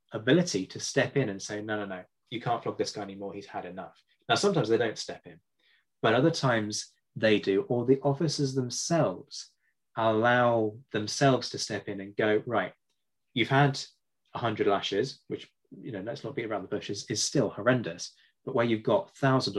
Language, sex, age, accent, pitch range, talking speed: English, male, 20-39, British, 105-135 Hz, 195 wpm